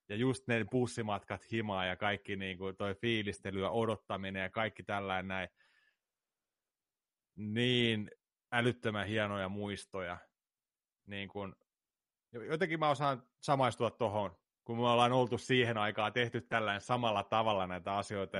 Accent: native